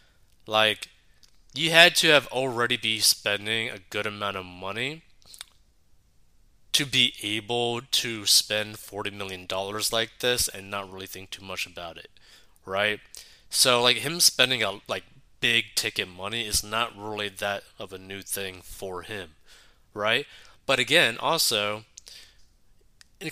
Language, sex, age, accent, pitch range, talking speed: English, male, 20-39, American, 95-120 Hz, 140 wpm